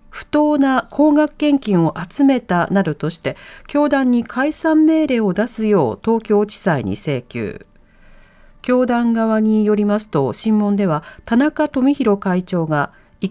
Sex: female